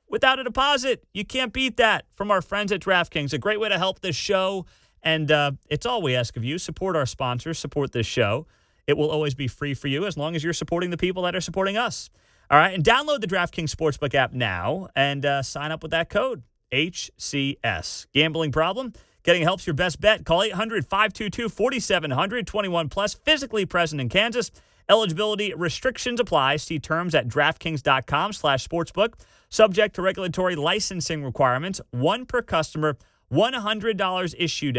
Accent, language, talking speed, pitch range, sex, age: American, English, 175 wpm, 135-195 Hz, male, 30-49